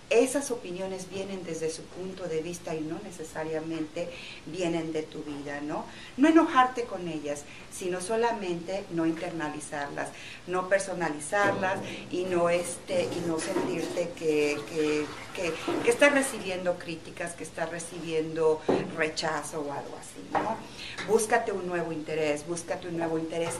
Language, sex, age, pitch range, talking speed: Spanish, female, 40-59, 165-200 Hz, 140 wpm